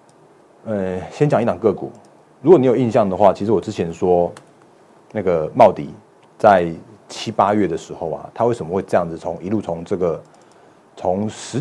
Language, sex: Chinese, male